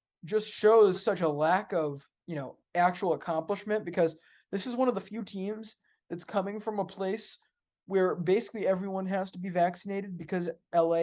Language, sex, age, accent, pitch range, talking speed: English, male, 20-39, American, 150-185 Hz, 175 wpm